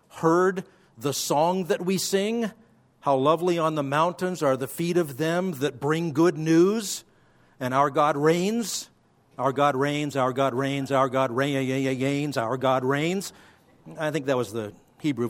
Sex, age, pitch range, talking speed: male, 50-69, 155-230 Hz, 175 wpm